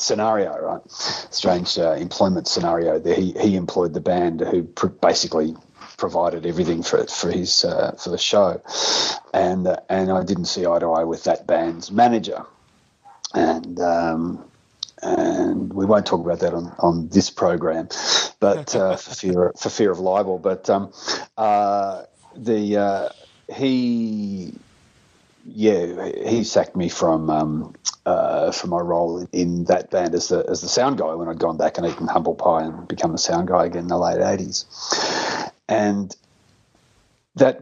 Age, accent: 40-59, Australian